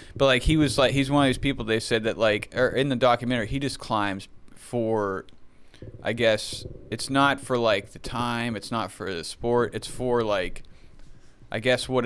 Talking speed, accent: 205 wpm, American